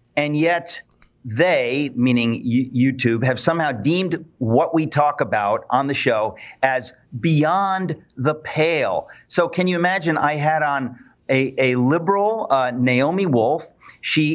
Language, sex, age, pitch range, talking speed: English, male, 40-59, 130-165 Hz, 140 wpm